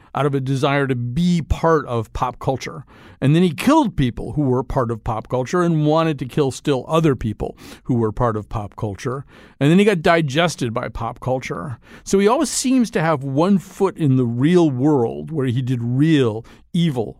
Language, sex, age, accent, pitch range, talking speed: English, male, 50-69, American, 120-150 Hz, 205 wpm